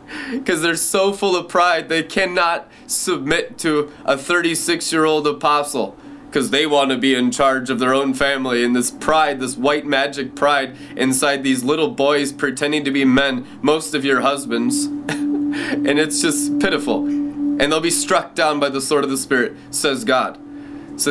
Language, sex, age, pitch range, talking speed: English, male, 20-39, 135-175 Hz, 175 wpm